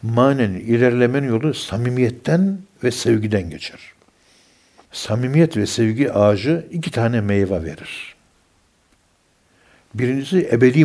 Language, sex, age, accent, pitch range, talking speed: Turkish, male, 60-79, native, 100-125 Hz, 95 wpm